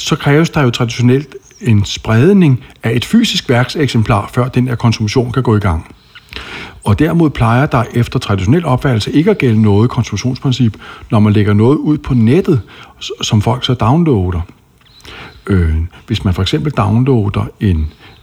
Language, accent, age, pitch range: Danish, native, 60-79, 100-130 Hz